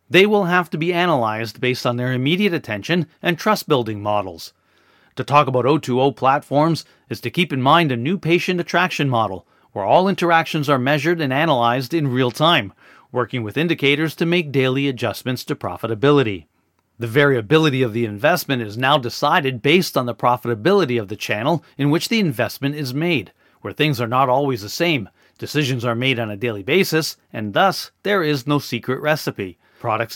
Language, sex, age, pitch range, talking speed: English, male, 40-59, 120-165 Hz, 180 wpm